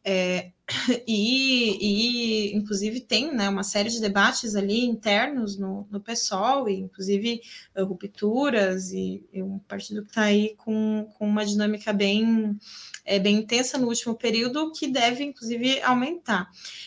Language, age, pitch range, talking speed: Portuguese, 20-39, 205-260 Hz, 130 wpm